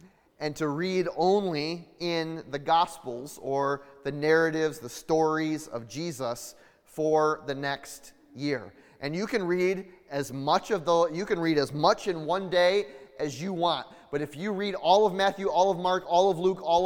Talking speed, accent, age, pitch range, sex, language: 180 wpm, American, 30-49, 155-195 Hz, male, English